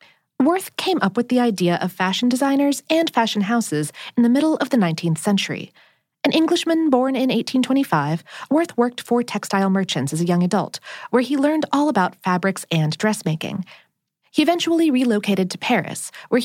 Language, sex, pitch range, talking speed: English, female, 180-280 Hz, 170 wpm